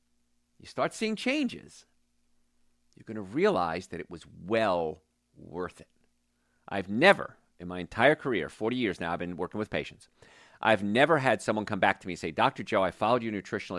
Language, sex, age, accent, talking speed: English, male, 50-69, American, 190 wpm